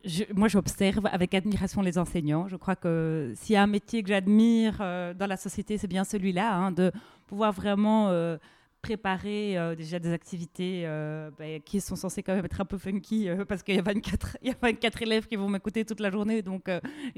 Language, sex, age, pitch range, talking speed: French, female, 30-49, 175-210 Hz, 225 wpm